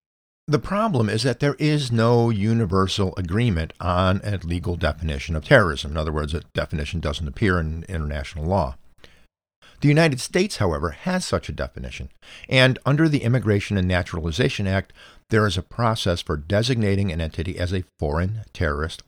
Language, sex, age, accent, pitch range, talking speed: English, male, 50-69, American, 85-110 Hz, 165 wpm